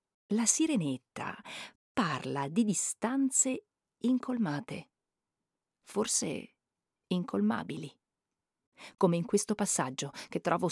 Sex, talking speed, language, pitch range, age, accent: female, 80 wpm, Italian, 160-225 Hz, 40-59, native